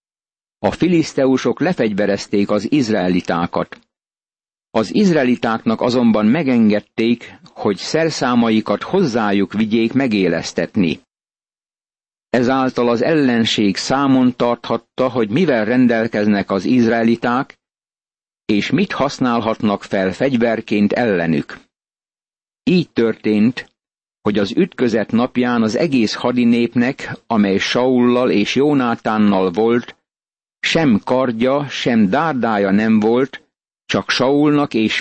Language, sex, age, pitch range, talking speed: Hungarian, male, 50-69, 105-125 Hz, 90 wpm